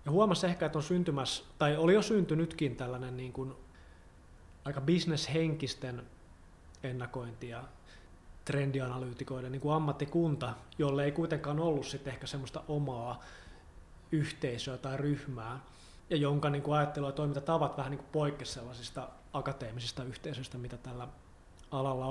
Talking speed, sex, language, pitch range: 125 wpm, male, Finnish, 120-145 Hz